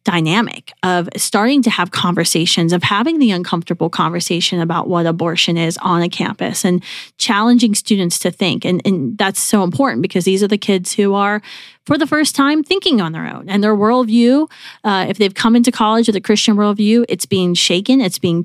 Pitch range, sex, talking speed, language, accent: 180-225 Hz, female, 200 wpm, English, American